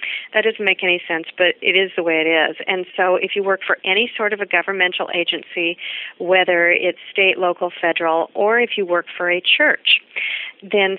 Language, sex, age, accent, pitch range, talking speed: English, female, 40-59, American, 170-205 Hz, 200 wpm